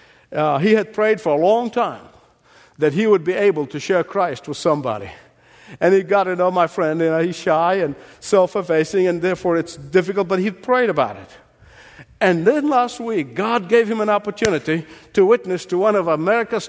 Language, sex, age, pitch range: English, male, 50-69, 185-270 Hz